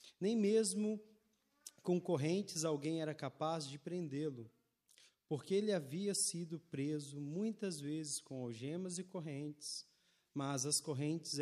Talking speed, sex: 120 wpm, male